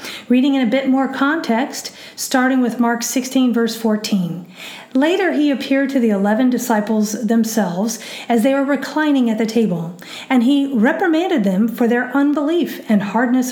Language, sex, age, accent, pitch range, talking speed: English, female, 40-59, American, 215-275 Hz, 160 wpm